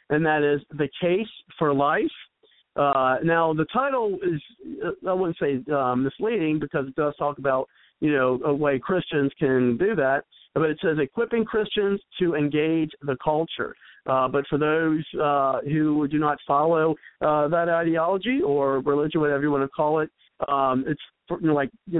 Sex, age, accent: male, 50-69, American